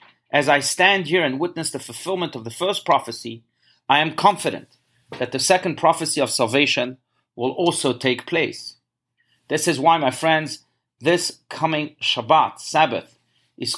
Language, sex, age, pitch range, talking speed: English, male, 40-59, 130-170 Hz, 155 wpm